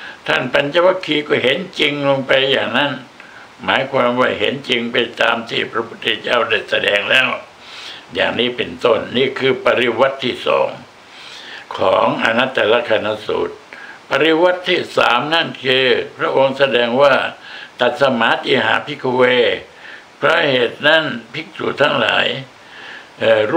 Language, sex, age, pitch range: Thai, male, 60-79, 120-150 Hz